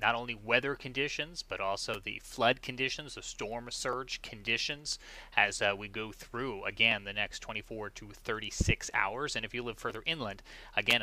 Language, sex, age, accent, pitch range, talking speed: English, male, 30-49, American, 110-135 Hz, 175 wpm